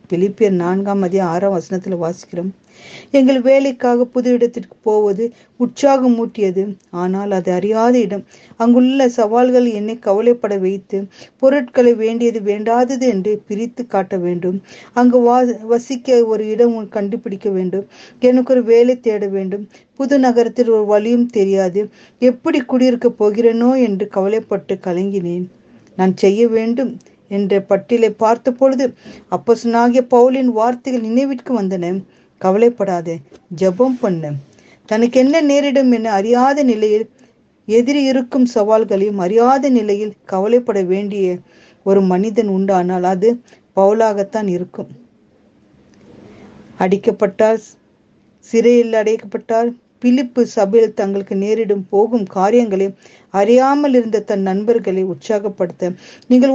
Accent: native